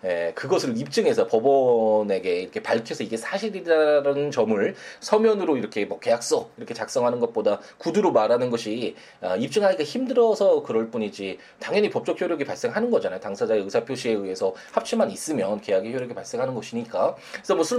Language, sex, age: Korean, male, 20-39